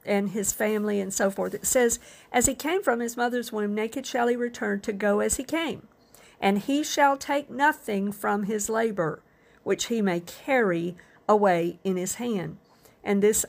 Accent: American